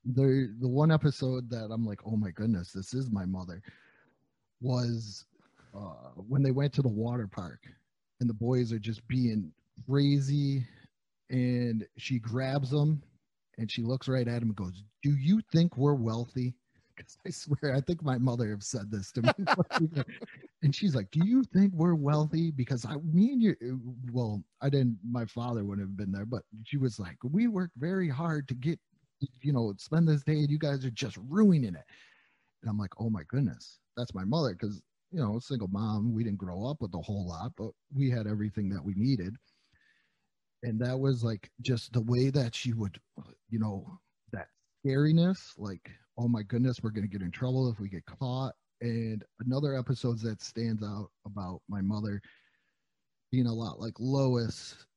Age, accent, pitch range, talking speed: 30-49, American, 110-140 Hz, 190 wpm